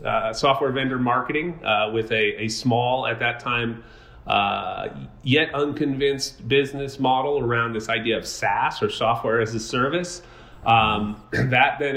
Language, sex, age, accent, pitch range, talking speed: English, male, 30-49, American, 110-125 Hz, 150 wpm